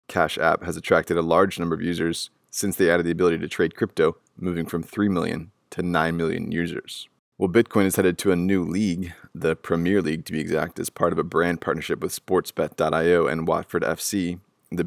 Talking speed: 210 wpm